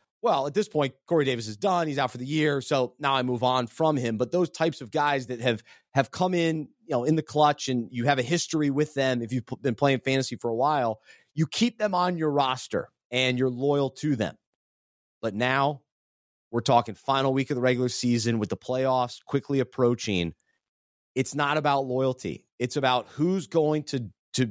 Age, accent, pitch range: 30-49, American, 125-155 Hz